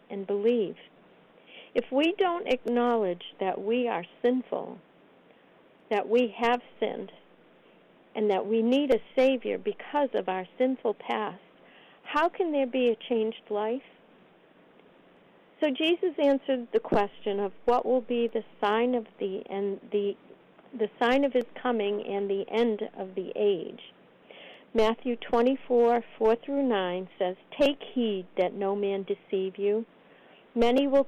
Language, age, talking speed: English, 50-69, 140 wpm